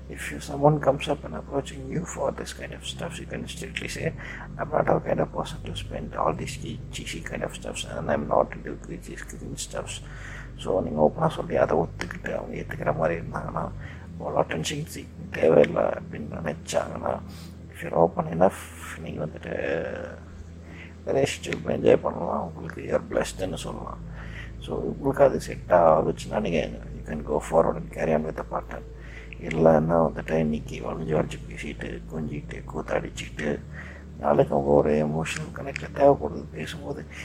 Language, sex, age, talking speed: Tamil, male, 60-79, 165 wpm